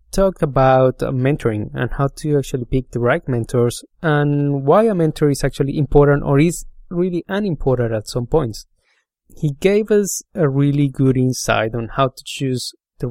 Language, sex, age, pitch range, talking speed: English, male, 20-39, 125-145 Hz, 175 wpm